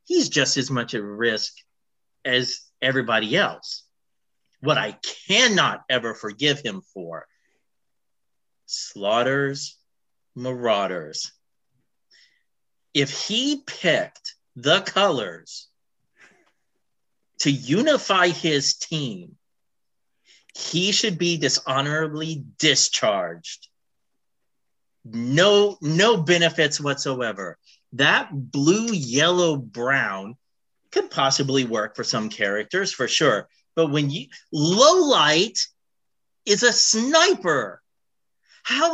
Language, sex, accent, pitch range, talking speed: English, male, American, 135-225 Hz, 90 wpm